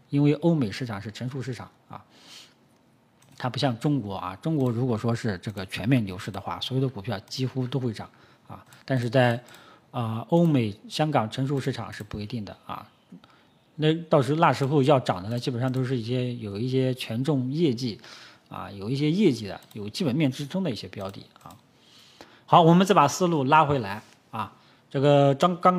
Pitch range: 110-140 Hz